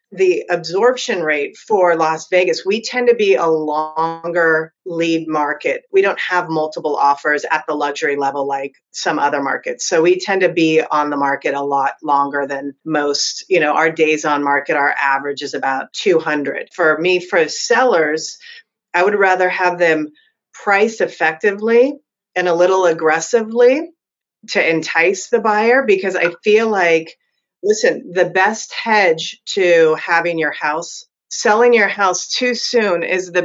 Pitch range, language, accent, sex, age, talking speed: 160-225 Hz, English, American, female, 30-49, 160 wpm